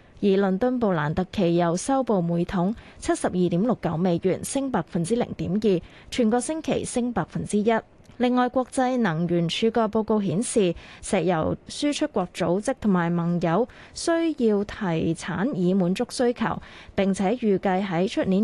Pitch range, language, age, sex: 175-235 Hz, Chinese, 20-39, female